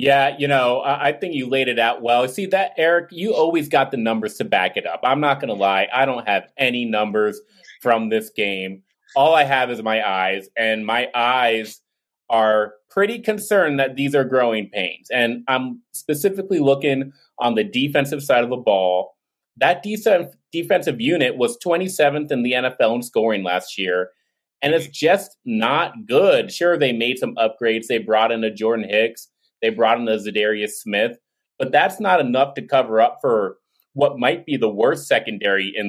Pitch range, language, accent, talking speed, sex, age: 110-150 Hz, English, American, 185 wpm, male, 30-49